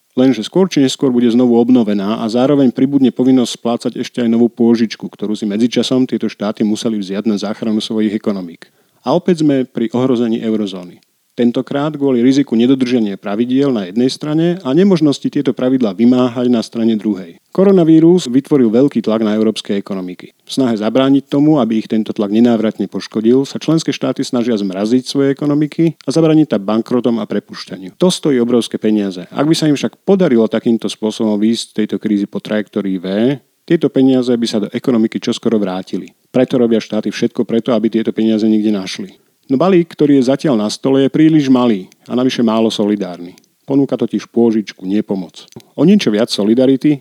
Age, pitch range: 40-59, 110-135 Hz